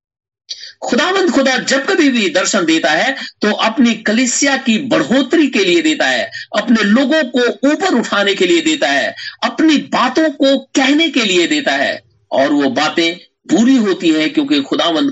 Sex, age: male, 50-69